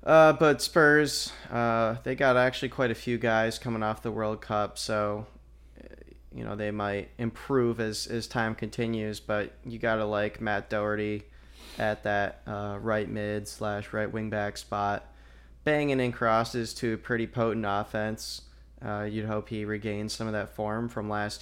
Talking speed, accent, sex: 170 wpm, American, male